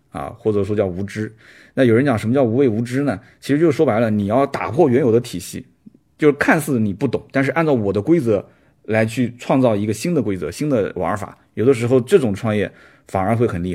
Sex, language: male, Chinese